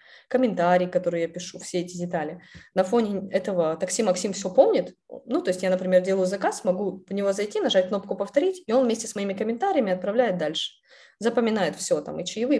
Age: 20-39